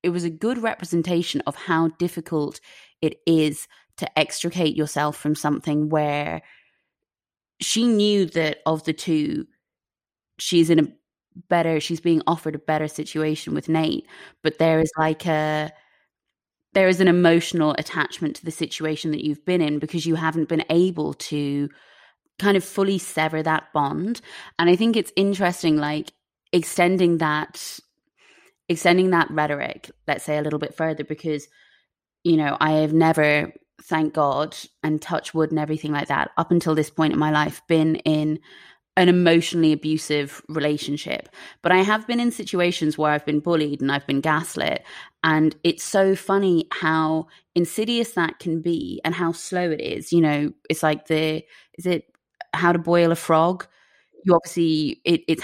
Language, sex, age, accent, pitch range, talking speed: English, female, 20-39, British, 155-175 Hz, 165 wpm